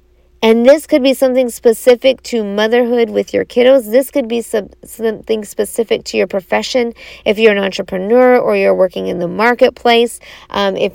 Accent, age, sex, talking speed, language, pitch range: American, 40-59, female, 175 wpm, English, 190-250 Hz